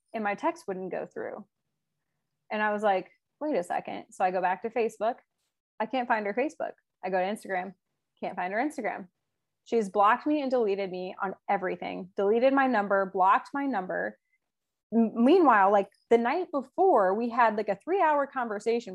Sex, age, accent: female, 20-39, American